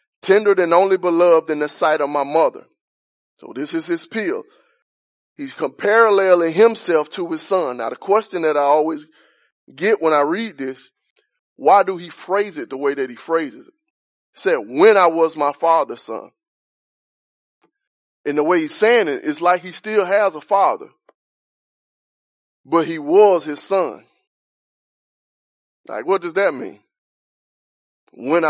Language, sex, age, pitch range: English, male, 20-39, 155-225 Hz